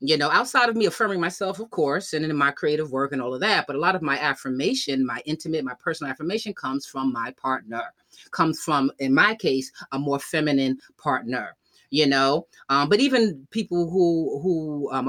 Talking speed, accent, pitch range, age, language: 205 wpm, American, 135-180 Hz, 30-49, English